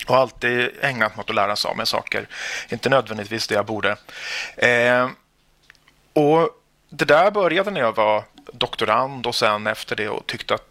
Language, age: Swedish, 30-49